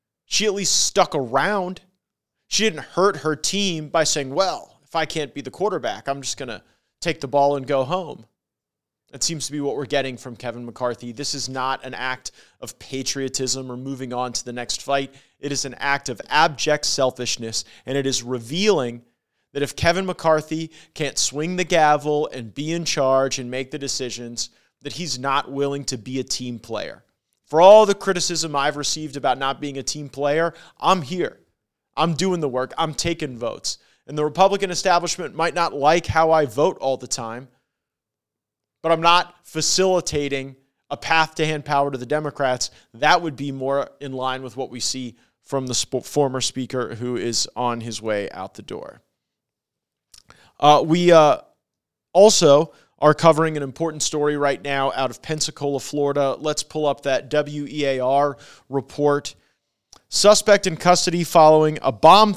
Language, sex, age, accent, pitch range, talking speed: English, male, 30-49, American, 130-160 Hz, 175 wpm